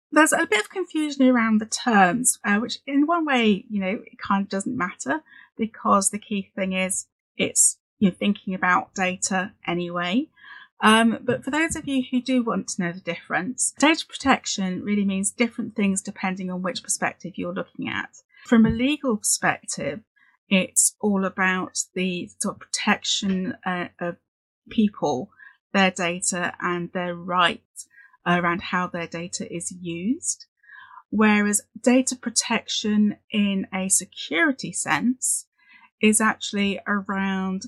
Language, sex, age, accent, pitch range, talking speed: English, female, 30-49, British, 185-245 Hz, 150 wpm